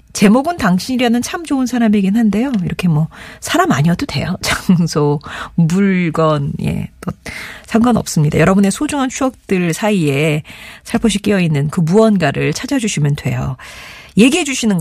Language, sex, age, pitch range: Korean, female, 40-59, 160-215 Hz